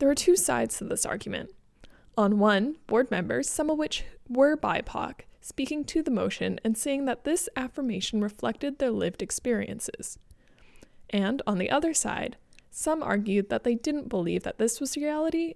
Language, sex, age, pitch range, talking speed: English, female, 20-39, 190-250 Hz, 170 wpm